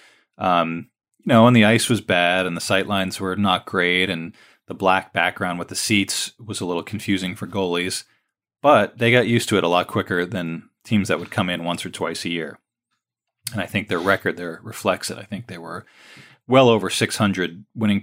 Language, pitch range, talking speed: English, 90-105 Hz, 215 wpm